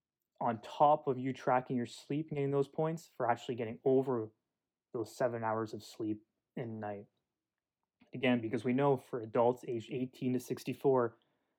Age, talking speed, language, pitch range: 20-39, 165 wpm, English, 110-135 Hz